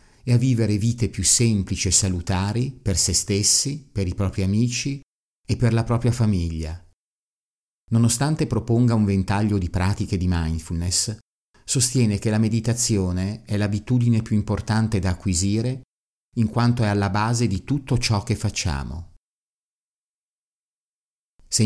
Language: Italian